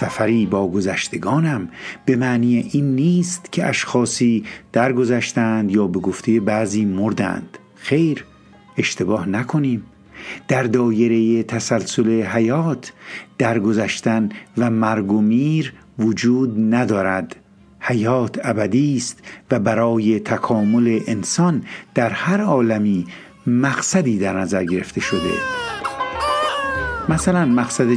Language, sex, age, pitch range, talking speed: Persian, male, 50-69, 105-130 Hz, 100 wpm